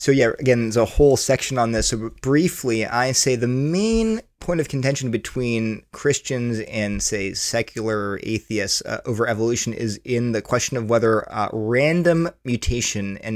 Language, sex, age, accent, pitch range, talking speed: English, male, 30-49, American, 110-145 Hz, 165 wpm